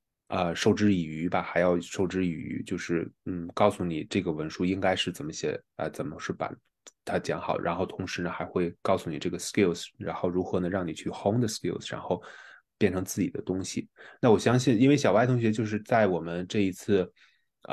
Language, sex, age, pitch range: Chinese, male, 20-39, 90-105 Hz